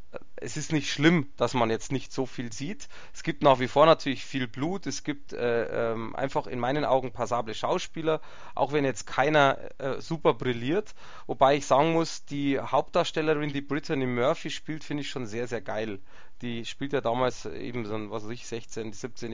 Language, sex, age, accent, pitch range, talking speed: German, male, 30-49, German, 125-155 Hz, 195 wpm